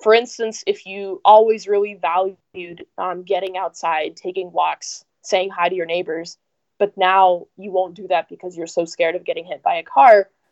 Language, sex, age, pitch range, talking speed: English, female, 10-29, 180-275 Hz, 190 wpm